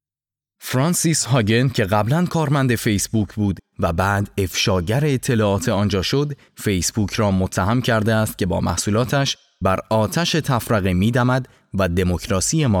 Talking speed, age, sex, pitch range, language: 130 wpm, 20-39, male, 100-130 Hz, Persian